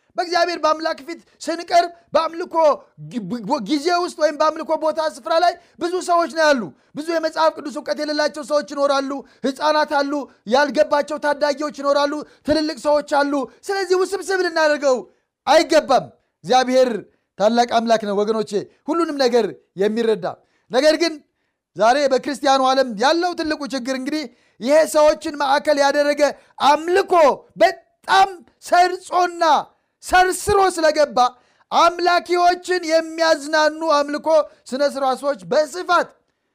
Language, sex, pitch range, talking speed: Amharic, male, 255-330 Hz, 100 wpm